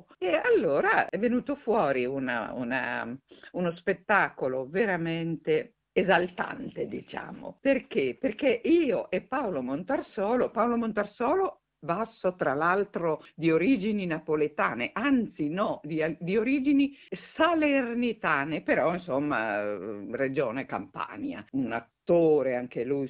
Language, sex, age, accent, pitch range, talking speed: Italian, female, 50-69, native, 150-245 Hz, 100 wpm